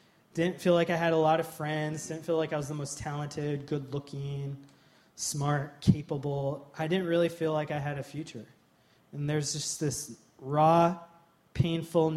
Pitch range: 140-165 Hz